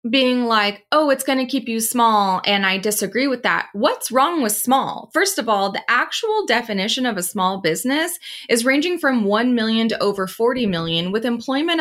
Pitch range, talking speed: 210-285 Hz, 200 wpm